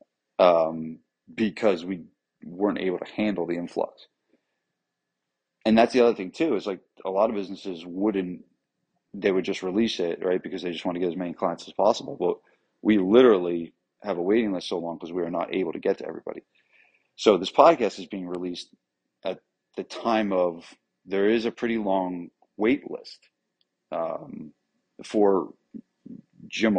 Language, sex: English, male